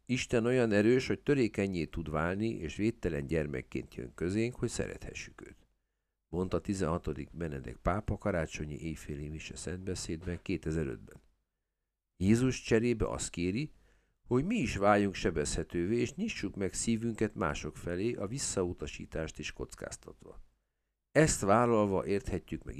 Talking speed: 125 wpm